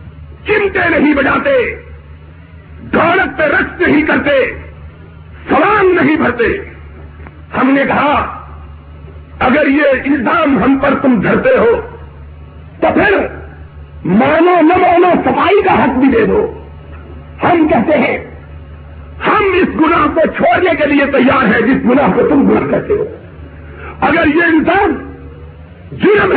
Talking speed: 125 wpm